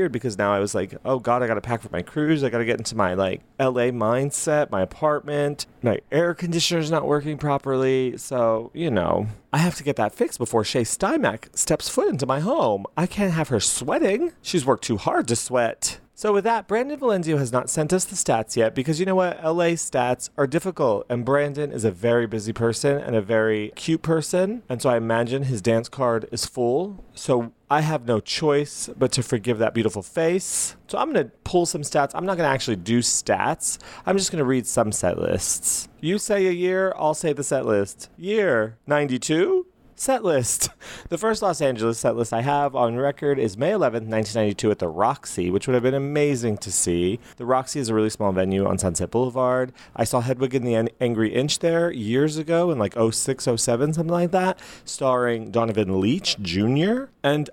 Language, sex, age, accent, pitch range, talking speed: English, male, 30-49, American, 115-155 Hz, 205 wpm